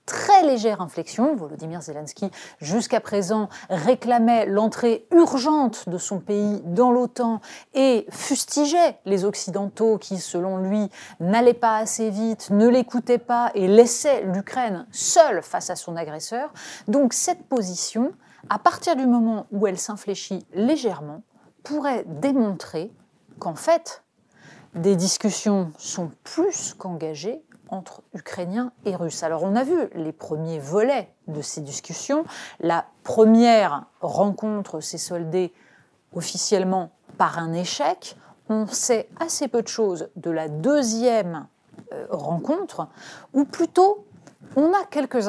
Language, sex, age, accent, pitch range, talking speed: French, female, 30-49, French, 185-265 Hz, 125 wpm